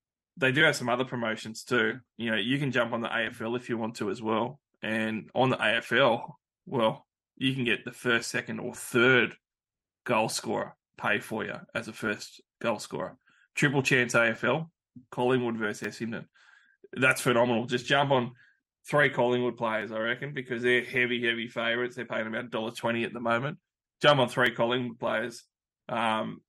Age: 20-39